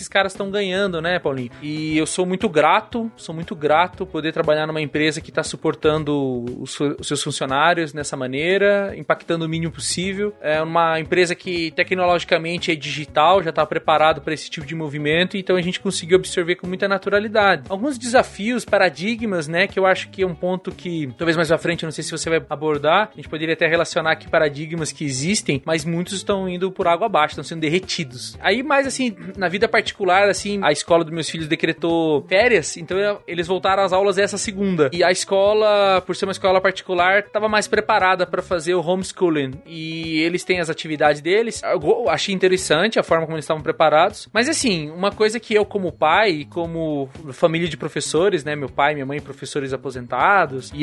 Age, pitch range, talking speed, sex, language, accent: 20-39, 155-190 Hz, 195 wpm, male, Portuguese, Brazilian